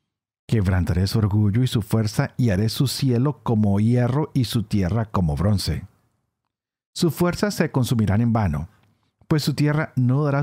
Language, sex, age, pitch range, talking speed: Spanish, male, 50-69, 105-150 Hz, 160 wpm